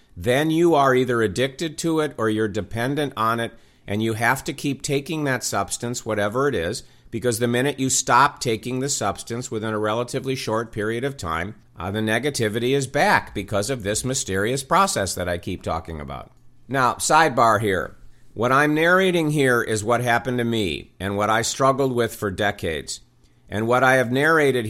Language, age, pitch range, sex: English, 50-69, 110-135 Hz, male